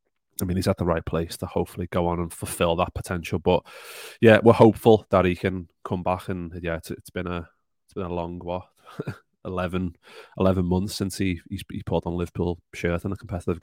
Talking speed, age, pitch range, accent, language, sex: 215 wpm, 20-39, 85-95 Hz, British, English, male